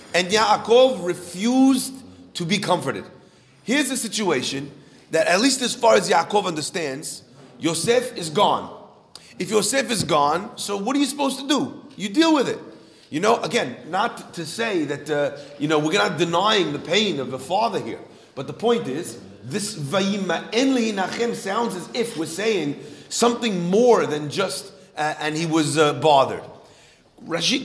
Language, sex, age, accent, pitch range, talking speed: English, male, 40-59, American, 165-235 Hz, 165 wpm